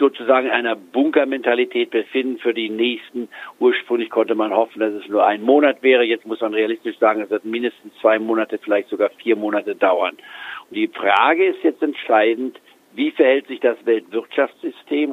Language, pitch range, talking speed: German, 115-150 Hz, 175 wpm